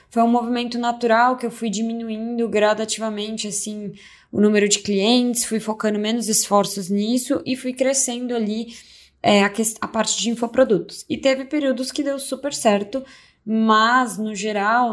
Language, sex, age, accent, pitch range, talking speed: Portuguese, female, 20-39, Brazilian, 195-245 Hz, 160 wpm